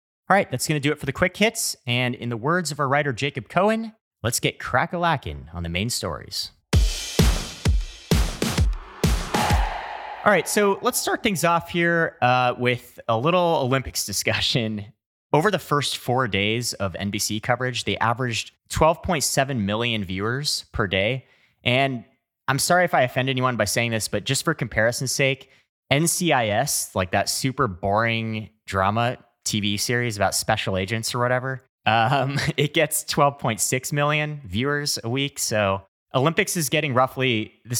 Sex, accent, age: male, American, 30-49